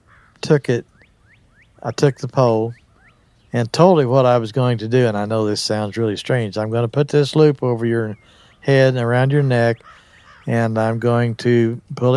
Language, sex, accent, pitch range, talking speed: English, male, American, 115-135 Hz, 195 wpm